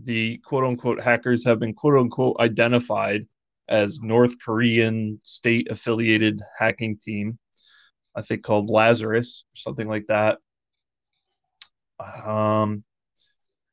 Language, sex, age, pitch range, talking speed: English, male, 20-39, 110-120 Hz, 95 wpm